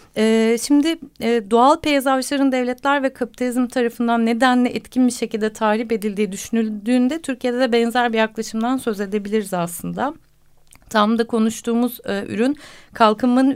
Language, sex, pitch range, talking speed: Turkish, female, 220-275 Hz, 130 wpm